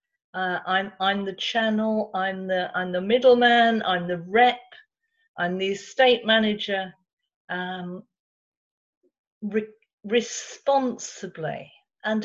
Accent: British